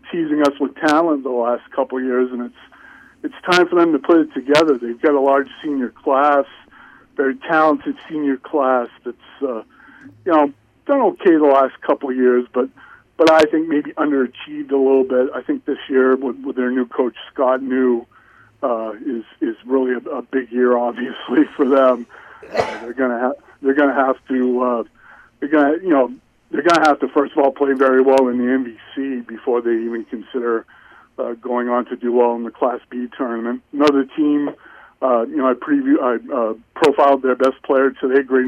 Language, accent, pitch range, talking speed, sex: English, American, 125-145 Hz, 200 wpm, male